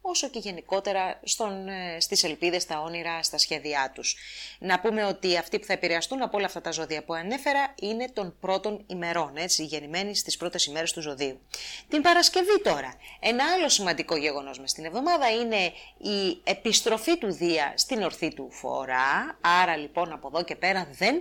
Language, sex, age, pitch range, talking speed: English, female, 30-49, 155-205 Hz, 170 wpm